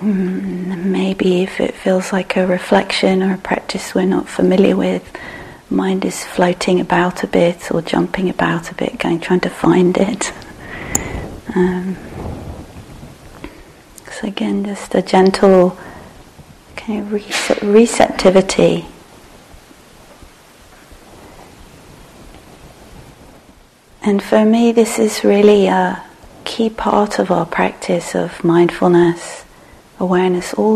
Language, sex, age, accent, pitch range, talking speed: English, female, 30-49, British, 175-195 Hz, 110 wpm